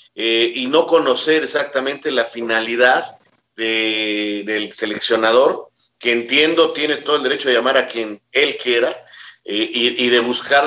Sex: male